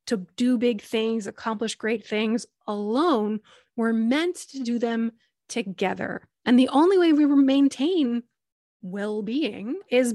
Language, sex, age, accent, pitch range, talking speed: English, female, 20-39, American, 210-250 Hz, 135 wpm